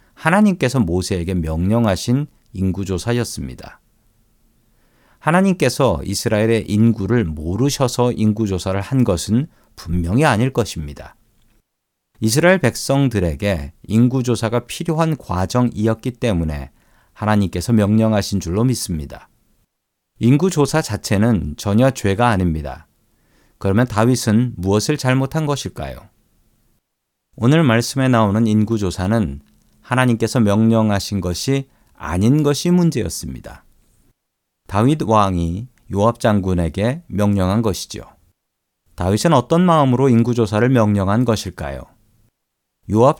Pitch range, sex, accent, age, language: 95-125 Hz, male, native, 40-59, Korean